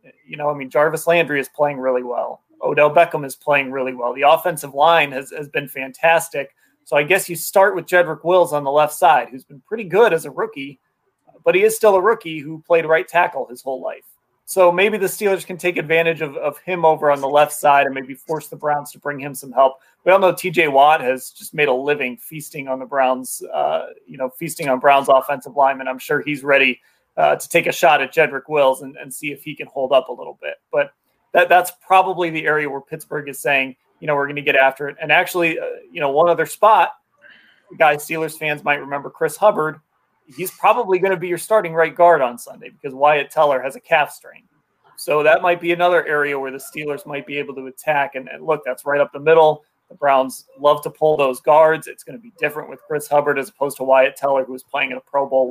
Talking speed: 245 wpm